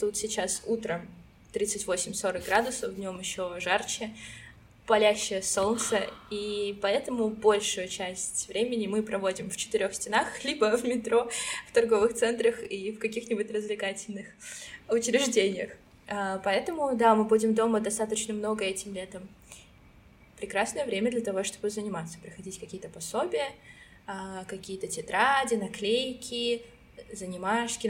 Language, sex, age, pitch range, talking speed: Russian, female, 20-39, 195-230 Hz, 115 wpm